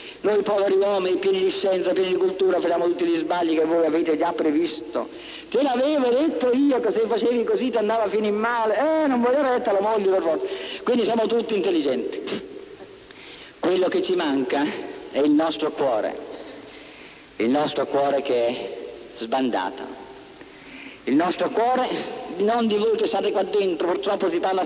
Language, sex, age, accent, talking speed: Italian, male, 50-69, native, 170 wpm